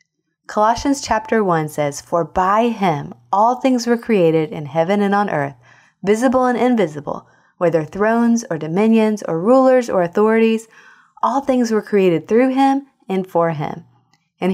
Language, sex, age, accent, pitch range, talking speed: English, female, 20-39, American, 165-230 Hz, 155 wpm